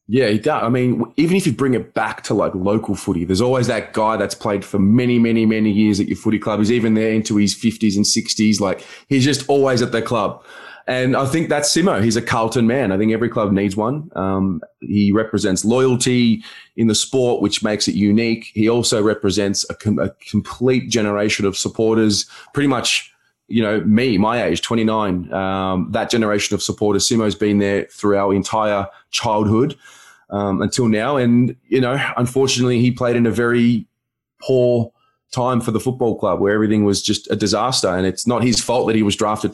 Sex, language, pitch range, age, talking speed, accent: male, English, 100-120 Hz, 20-39, 205 wpm, Australian